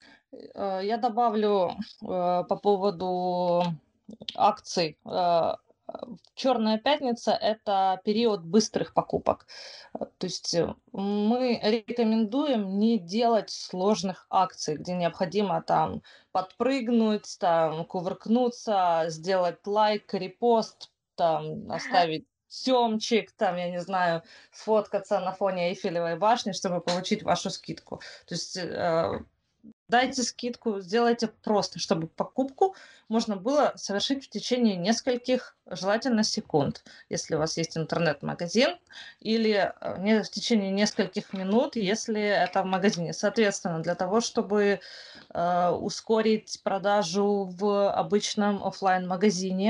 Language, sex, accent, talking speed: Ukrainian, female, native, 95 wpm